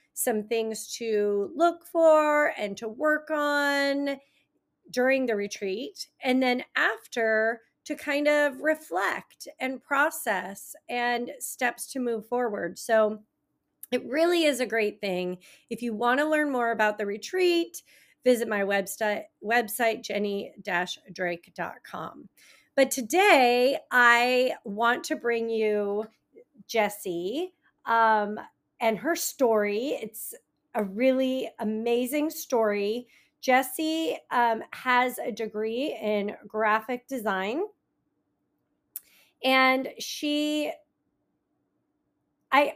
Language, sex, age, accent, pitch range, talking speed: English, female, 40-59, American, 220-290 Hz, 105 wpm